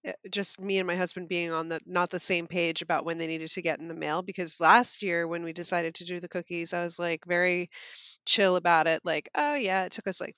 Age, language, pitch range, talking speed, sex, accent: 30-49, English, 170-205 Hz, 260 wpm, female, American